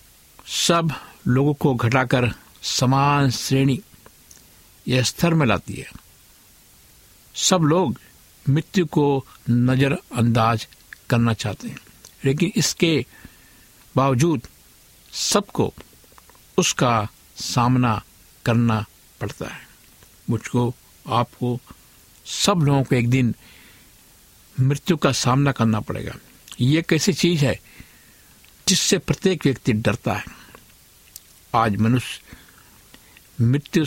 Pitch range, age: 110-140 Hz, 60-79